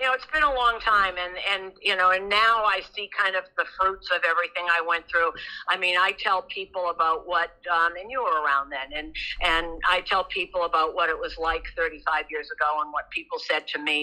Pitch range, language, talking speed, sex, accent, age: 155-195 Hz, English, 240 wpm, female, American, 50-69